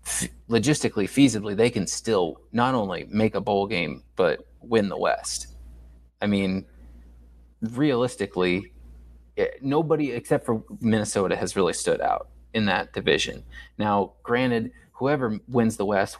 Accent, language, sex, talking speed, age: American, English, male, 130 wpm, 30-49